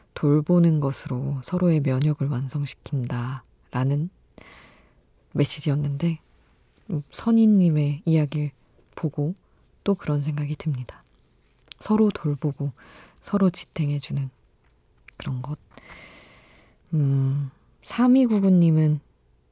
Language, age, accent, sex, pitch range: Korean, 20-39, native, female, 140-170 Hz